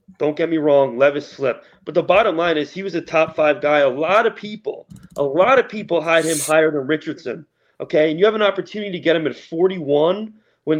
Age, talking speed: 30-49, 235 wpm